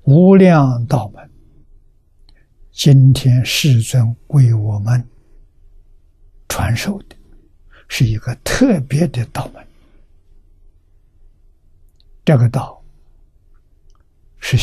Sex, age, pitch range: male, 60-79, 80-135 Hz